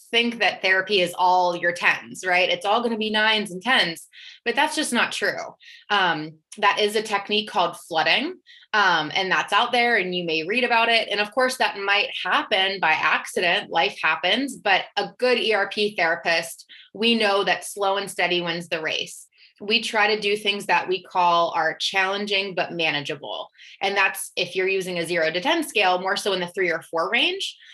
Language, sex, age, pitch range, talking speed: English, female, 20-39, 180-240 Hz, 200 wpm